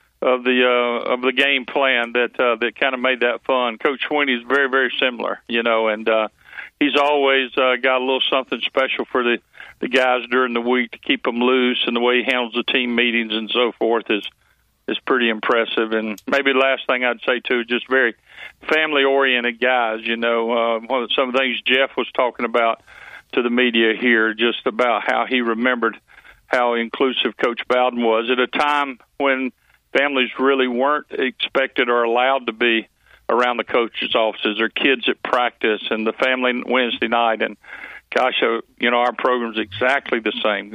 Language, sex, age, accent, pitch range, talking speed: English, male, 50-69, American, 120-130 Hz, 195 wpm